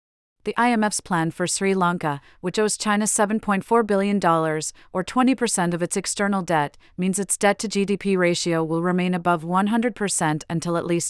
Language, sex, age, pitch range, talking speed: English, female, 40-59, 165-200 Hz, 150 wpm